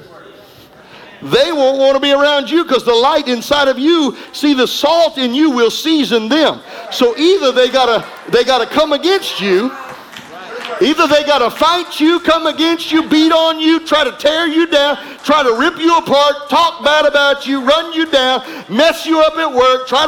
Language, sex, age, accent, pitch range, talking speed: English, male, 50-69, American, 245-315 Hz, 195 wpm